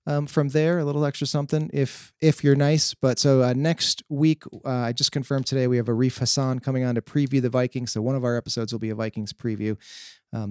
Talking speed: 245 wpm